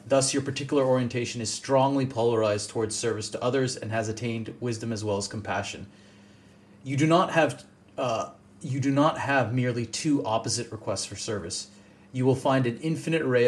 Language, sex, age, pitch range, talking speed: English, male, 30-49, 110-135 Hz, 180 wpm